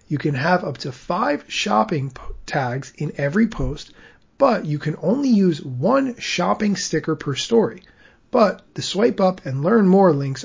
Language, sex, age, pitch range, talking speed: English, male, 30-49, 140-175 Hz, 165 wpm